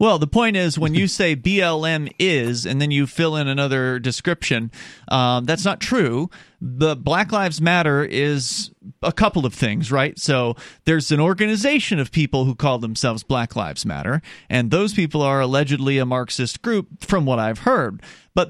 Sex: male